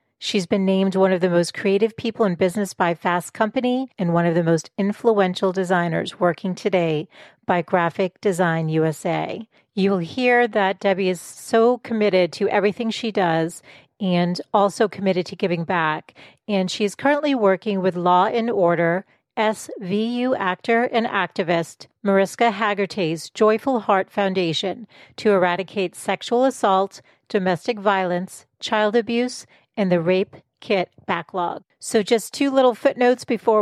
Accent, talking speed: American, 145 wpm